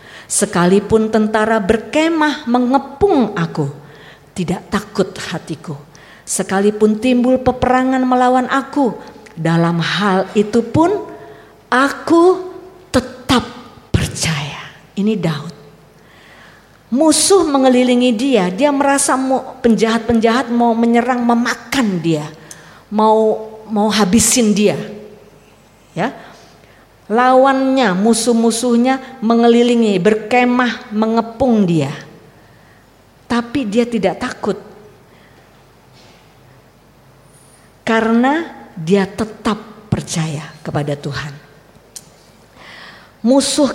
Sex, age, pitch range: female, 40-59, 165-250 Hz